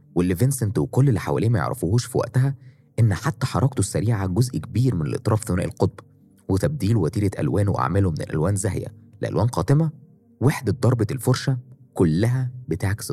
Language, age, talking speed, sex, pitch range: Arabic, 20-39, 145 wpm, male, 100-130 Hz